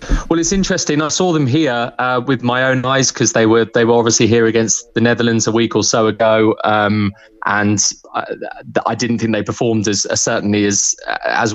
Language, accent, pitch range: English, British, 110-130 Hz